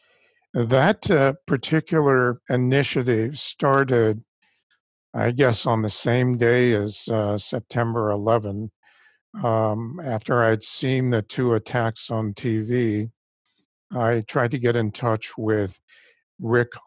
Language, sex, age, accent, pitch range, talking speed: English, male, 60-79, American, 110-130 Hz, 115 wpm